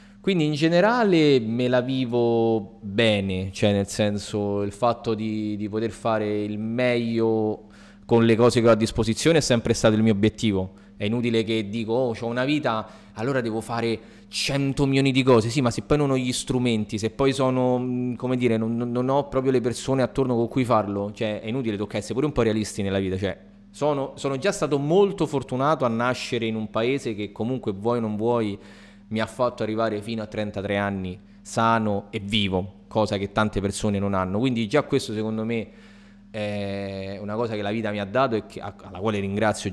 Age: 20-39